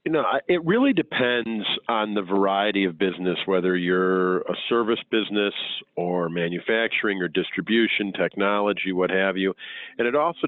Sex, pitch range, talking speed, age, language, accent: male, 95-115 Hz, 150 wpm, 40-59, English, American